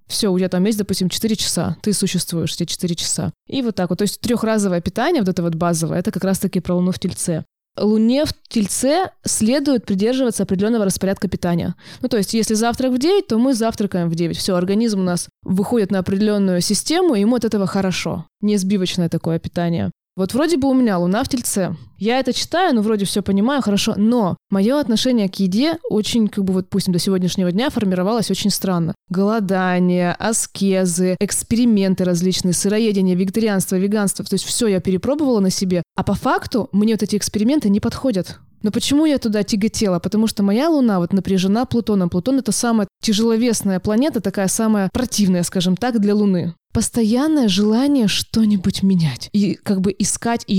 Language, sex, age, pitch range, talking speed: Russian, female, 20-39, 185-230 Hz, 185 wpm